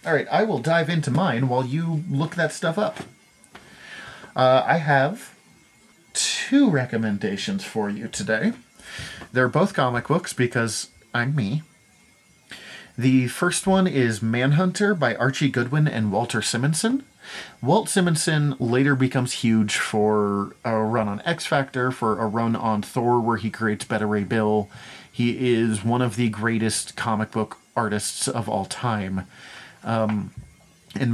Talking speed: 145 wpm